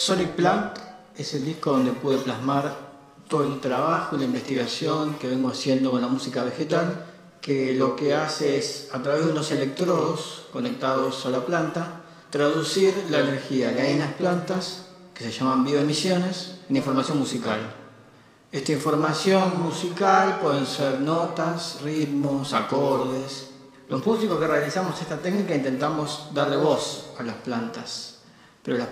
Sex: male